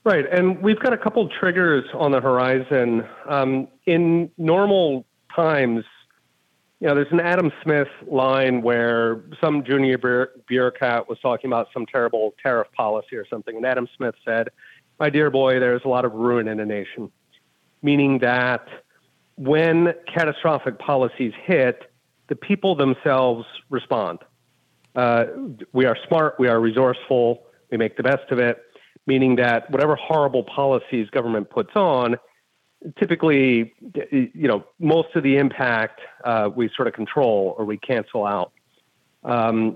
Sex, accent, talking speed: male, American, 150 wpm